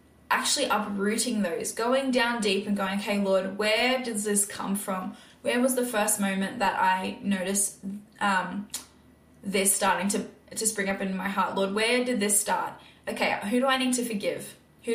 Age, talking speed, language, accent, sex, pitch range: 10-29, 190 wpm, English, Australian, female, 195-225 Hz